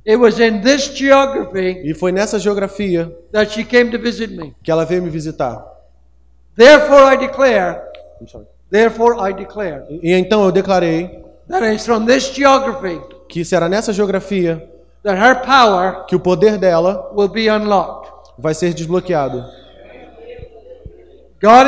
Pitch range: 170-235 Hz